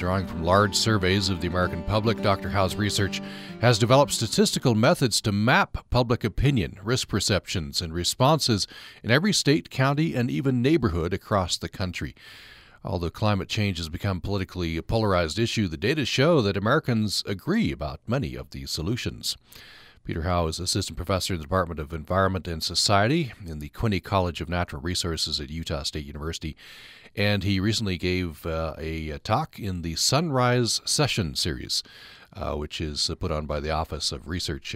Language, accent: English, American